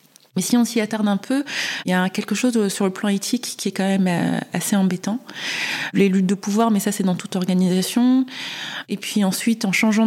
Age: 20-39